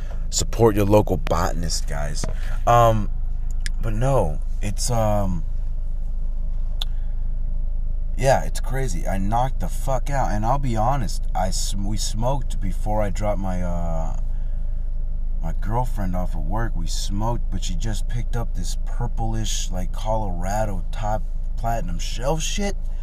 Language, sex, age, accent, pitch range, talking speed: English, male, 30-49, American, 85-115 Hz, 130 wpm